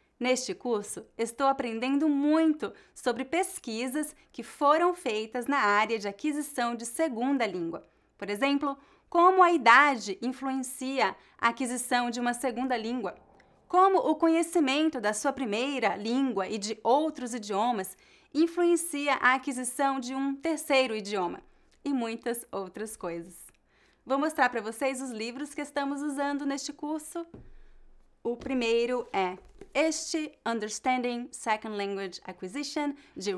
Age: 30-49